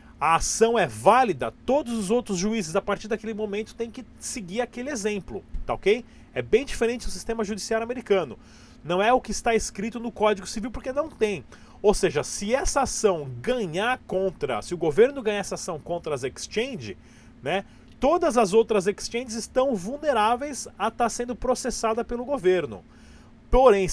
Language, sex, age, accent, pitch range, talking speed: Portuguese, male, 30-49, Brazilian, 185-235 Hz, 170 wpm